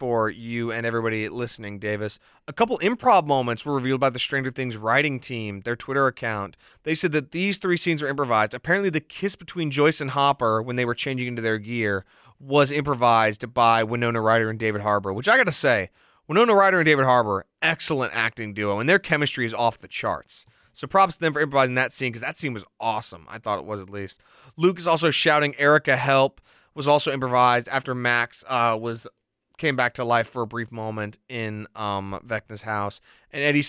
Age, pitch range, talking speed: 30-49, 110-145 Hz, 210 wpm